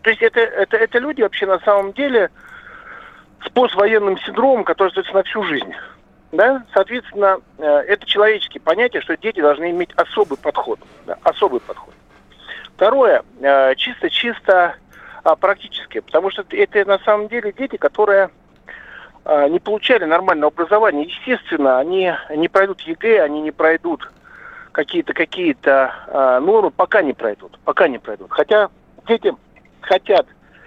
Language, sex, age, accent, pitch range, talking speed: Russian, male, 50-69, native, 170-250 Hz, 120 wpm